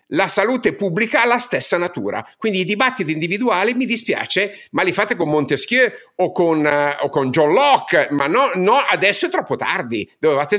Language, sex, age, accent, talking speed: Italian, male, 50-69, native, 180 wpm